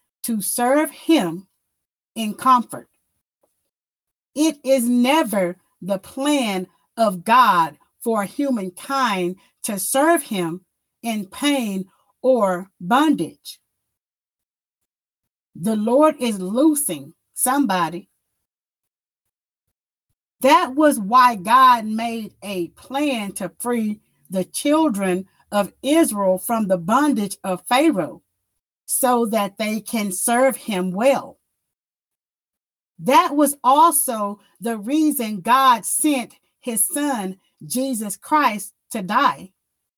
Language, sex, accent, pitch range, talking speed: English, female, American, 200-285 Hz, 95 wpm